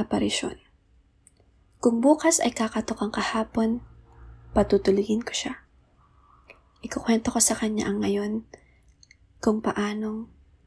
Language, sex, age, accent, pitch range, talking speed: Filipino, female, 20-39, native, 190-225 Hz, 95 wpm